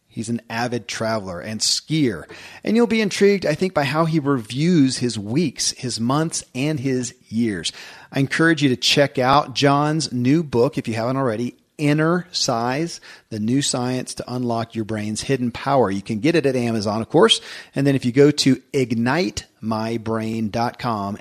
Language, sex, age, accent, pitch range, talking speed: English, male, 40-59, American, 125-155 Hz, 175 wpm